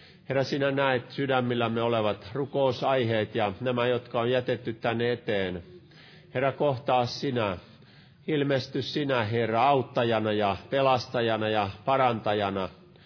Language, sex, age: Finnish, male, 50-69